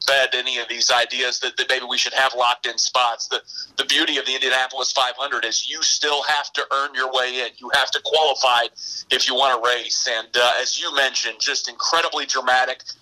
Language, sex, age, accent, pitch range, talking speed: English, male, 40-59, American, 125-150 Hz, 215 wpm